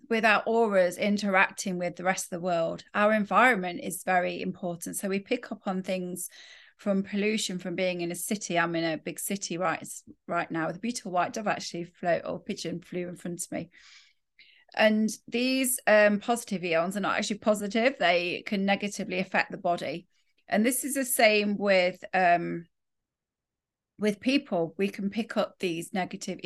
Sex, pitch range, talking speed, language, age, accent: female, 175-210 Hz, 180 wpm, English, 30-49, British